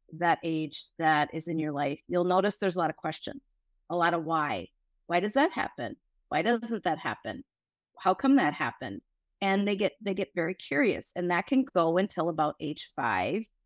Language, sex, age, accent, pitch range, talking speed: English, female, 30-49, American, 160-205 Hz, 200 wpm